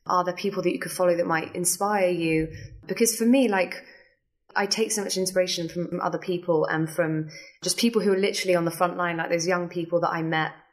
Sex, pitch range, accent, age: female, 170-205 Hz, British, 20-39